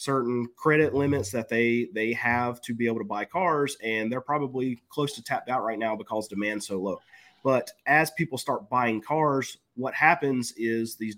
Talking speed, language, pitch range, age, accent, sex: 195 wpm, English, 115-140 Hz, 30-49, American, male